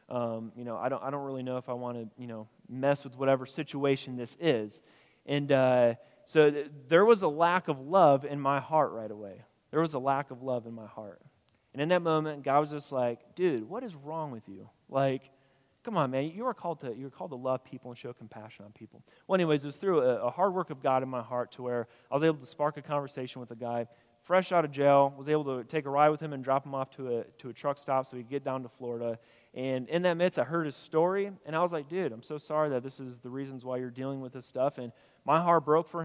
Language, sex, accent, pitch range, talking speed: English, male, American, 125-155 Hz, 275 wpm